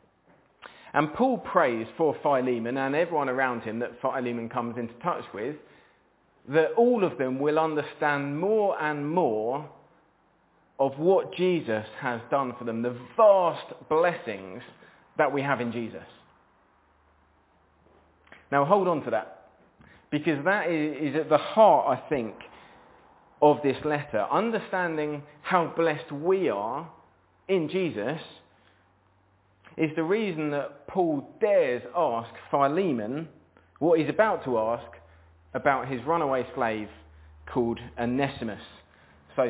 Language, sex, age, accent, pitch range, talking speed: English, male, 30-49, British, 105-155 Hz, 125 wpm